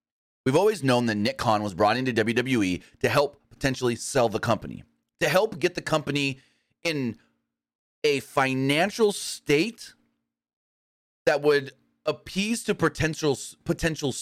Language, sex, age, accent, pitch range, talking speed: English, male, 30-49, American, 110-145 Hz, 130 wpm